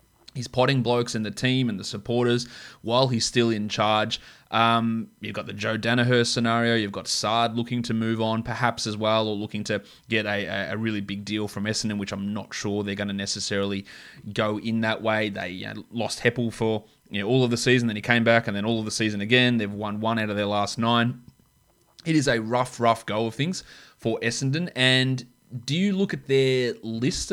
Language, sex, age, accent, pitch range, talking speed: English, male, 20-39, Australian, 105-120 Hz, 215 wpm